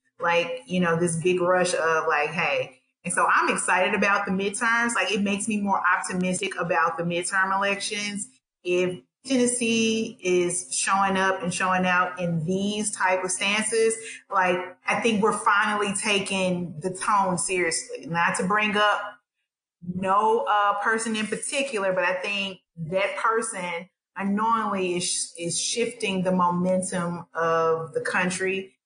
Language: English